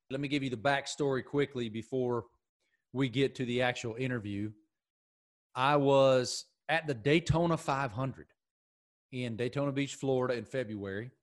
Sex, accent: male, American